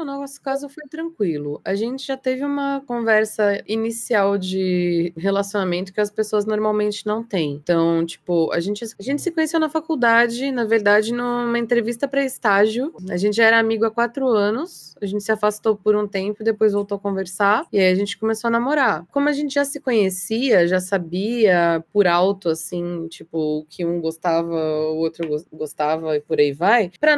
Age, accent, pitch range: 20-39, Brazilian, 185-255 Hz